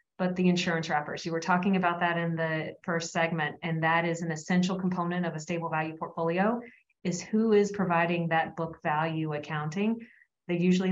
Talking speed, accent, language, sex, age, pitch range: 180 wpm, American, English, female, 30-49, 170-195 Hz